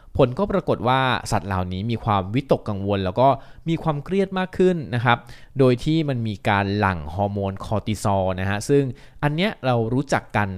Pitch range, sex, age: 100-130 Hz, male, 20-39